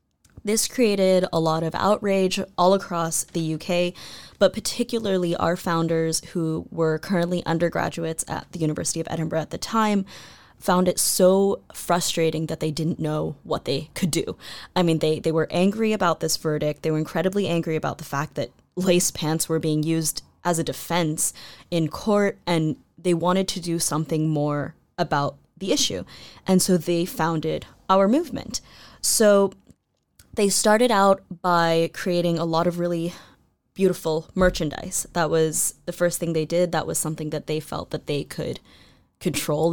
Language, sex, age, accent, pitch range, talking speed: English, female, 10-29, American, 160-185 Hz, 165 wpm